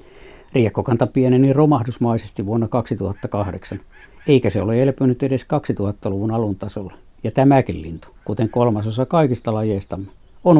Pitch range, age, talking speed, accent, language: 100-135 Hz, 60-79, 120 wpm, native, Finnish